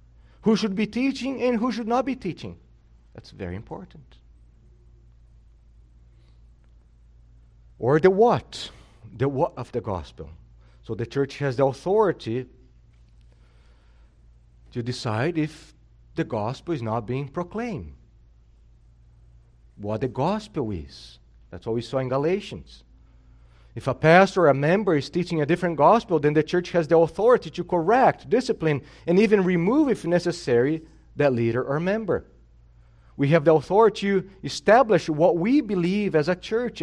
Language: English